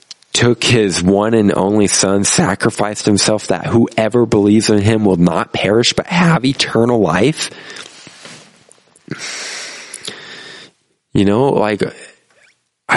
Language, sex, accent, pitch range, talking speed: English, male, American, 85-115 Hz, 105 wpm